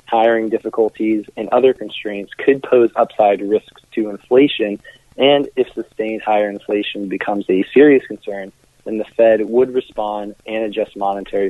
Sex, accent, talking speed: male, American, 145 wpm